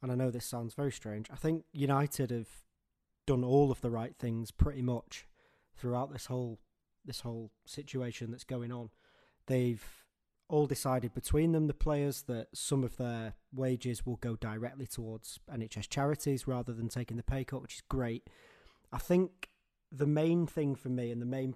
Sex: male